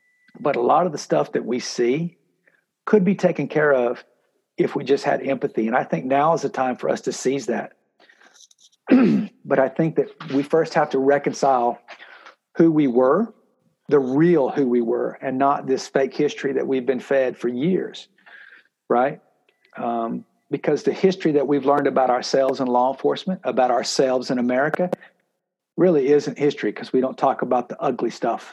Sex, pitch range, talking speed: male, 130-165 Hz, 185 wpm